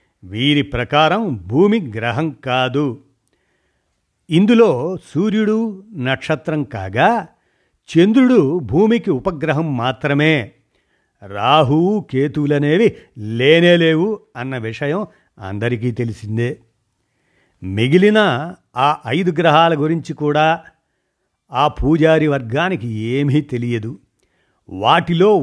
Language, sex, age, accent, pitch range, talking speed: Telugu, male, 50-69, native, 130-175 Hz, 75 wpm